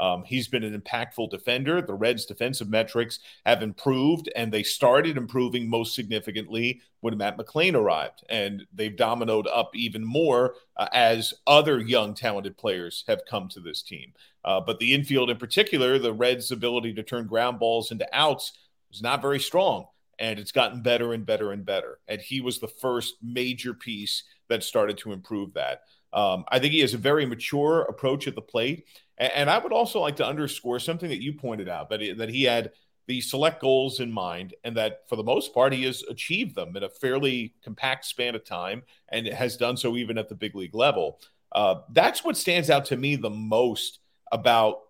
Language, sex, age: English, male, 40-59